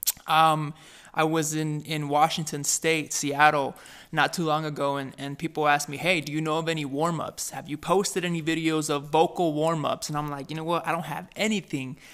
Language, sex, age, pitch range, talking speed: English, male, 20-39, 150-180 Hz, 210 wpm